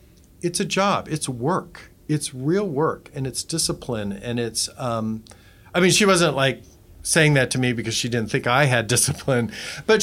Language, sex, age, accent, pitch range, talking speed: English, male, 50-69, American, 120-160 Hz, 185 wpm